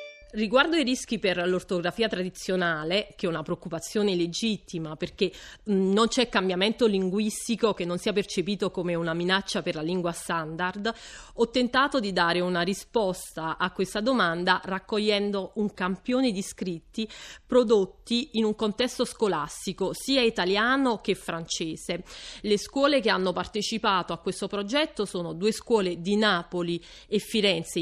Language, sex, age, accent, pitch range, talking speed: Italian, female, 30-49, native, 180-225 Hz, 140 wpm